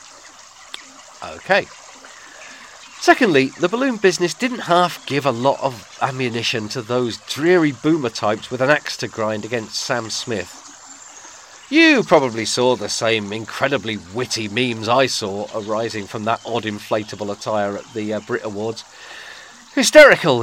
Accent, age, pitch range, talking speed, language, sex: British, 40-59, 110-185 Hz, 140 wpm, English, male